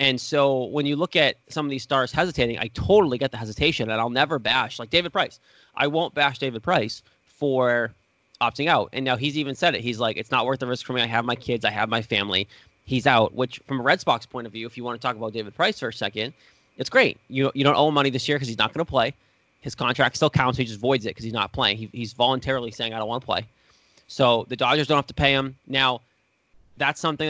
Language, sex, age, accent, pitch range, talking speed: English, male, 20-39, American, 115-140 Hz, 270 wpm